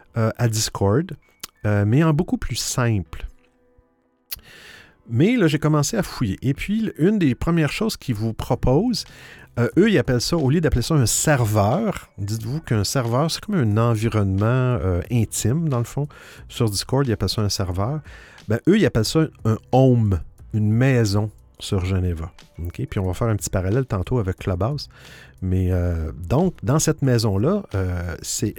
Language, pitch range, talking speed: French, 100-135 Hz, 175 wpm